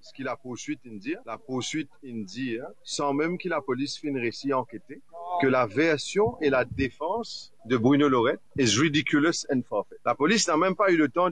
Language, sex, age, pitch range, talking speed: English, male, 40-59, 125-170 Hz, 205 wpm